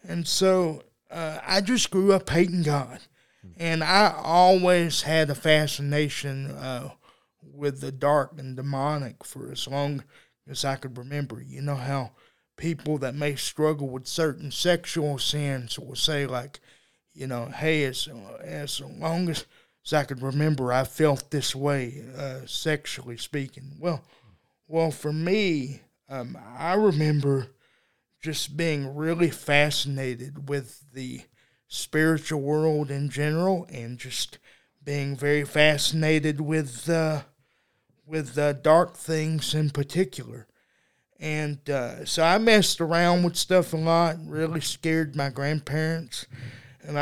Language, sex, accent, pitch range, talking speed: English, male, American, 135-160 Hz, 135 wpm